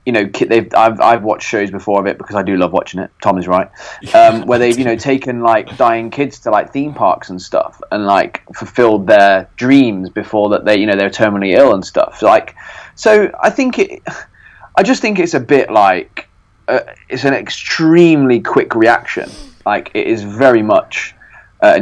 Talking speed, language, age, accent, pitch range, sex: 205 wpm, English, 20-39, British, 95-115 Hz, male